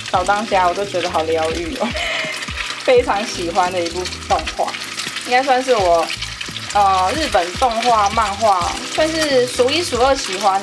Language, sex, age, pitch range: Chinese, female, 20-39, 180-265 Hz